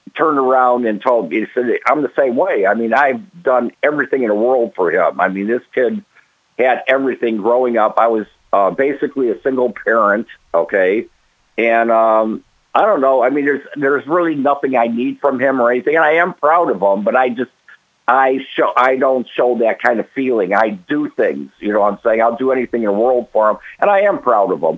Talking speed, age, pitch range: 230 wpm, 50-69, 110-130 Hz